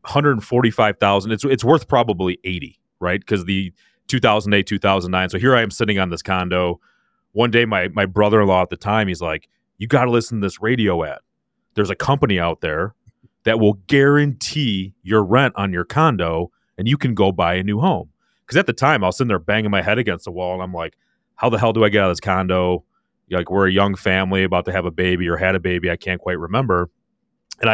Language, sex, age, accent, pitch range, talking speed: English, male, 30-49, American, 90-110 Hz, 230 wpm